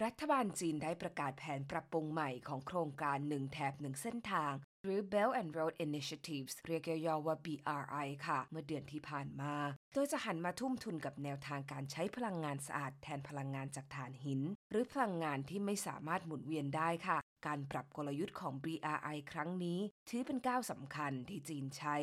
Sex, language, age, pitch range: female, Thai, 20-39, 145-185 Hz